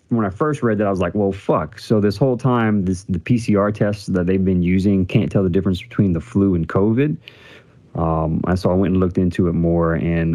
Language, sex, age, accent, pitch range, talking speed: English, male, 30-49, American, 85-105 Hz, 245 wpm